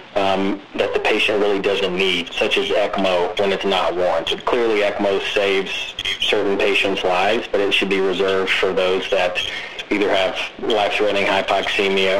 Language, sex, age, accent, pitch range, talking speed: English, male, 30-49, American, 95-145 Hz, 155 wpm